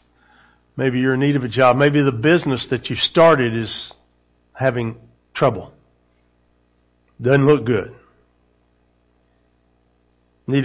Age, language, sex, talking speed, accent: 50-69, English, male, 115 wpm, American